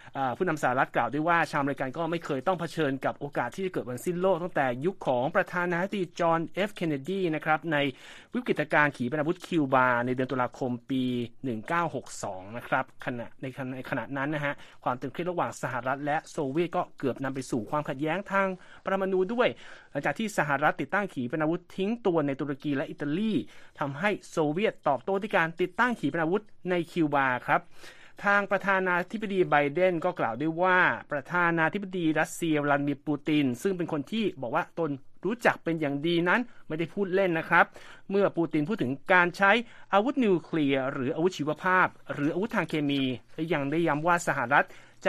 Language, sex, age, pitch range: Thai, male, 30-49, 140-185 Hz